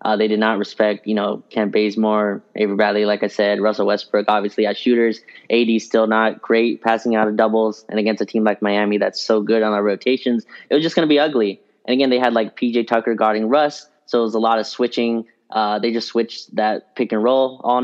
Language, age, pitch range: English, 20-39, 105-115 Hz